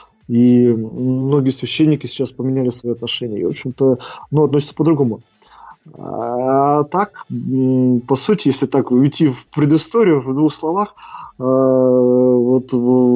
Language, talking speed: Russian, 110 wpm